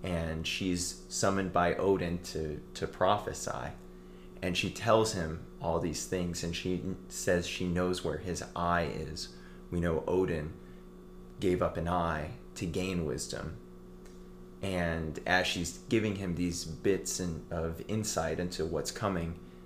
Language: English